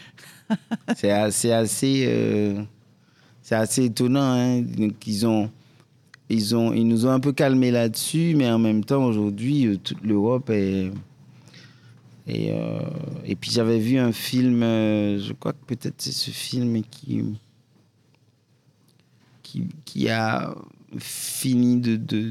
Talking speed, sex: 130 wpm, male